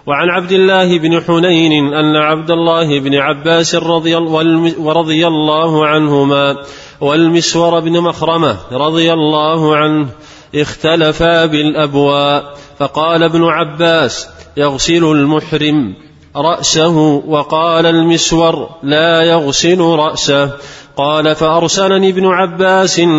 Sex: male